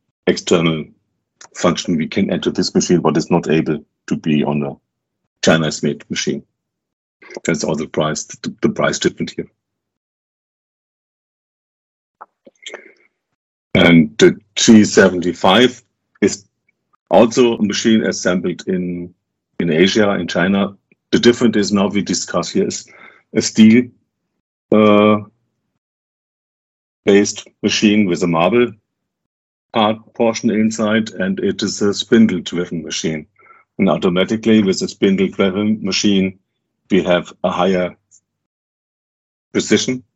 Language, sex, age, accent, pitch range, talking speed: English, male, 50-69, German, 95-115 Hz, 115 wpm